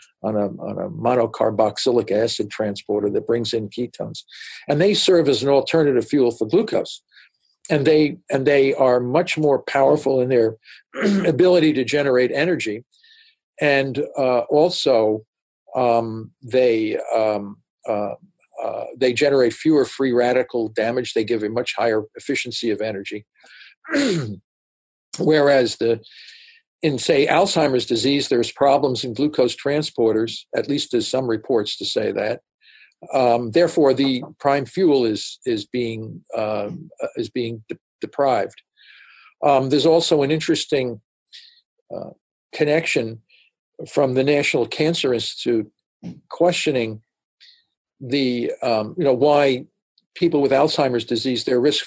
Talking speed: 130 wpm